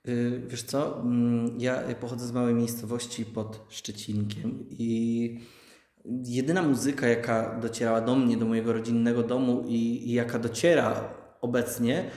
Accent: native